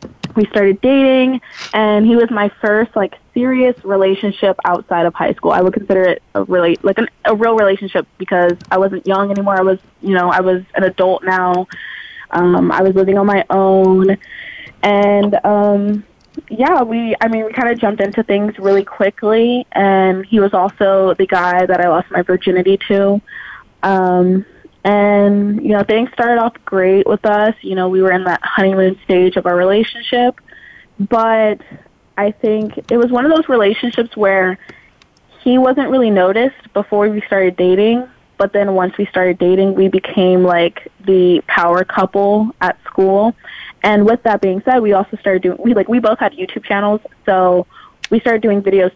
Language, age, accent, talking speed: English, 20-39, American, 180 wpm